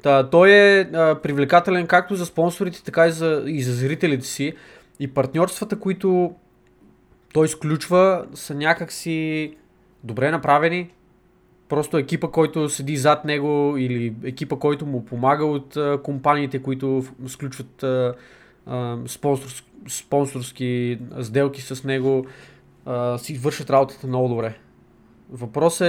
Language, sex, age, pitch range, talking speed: Bulgarian, male, 20-39, 130-160 Hz, 125 wpm